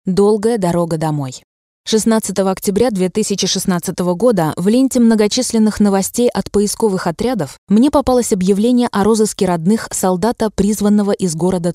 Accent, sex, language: native, female, Russian